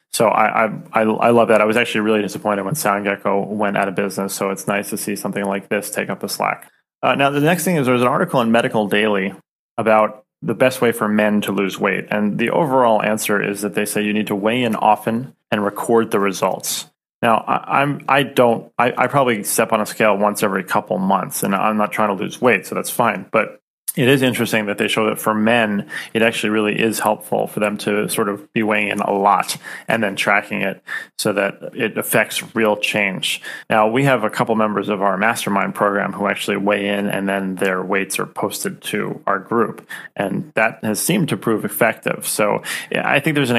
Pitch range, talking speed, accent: 105-115 Hz, 225 wpm, American